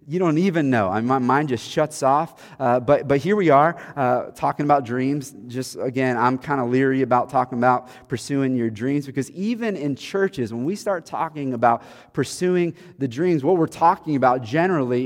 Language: English